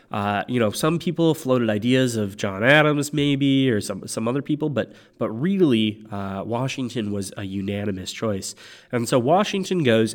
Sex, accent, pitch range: male, American, 105-130 Hz